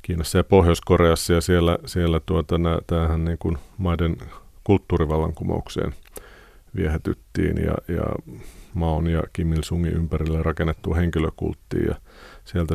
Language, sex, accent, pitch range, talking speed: Finnish, male, native, 80-90 Hz, 115 wpm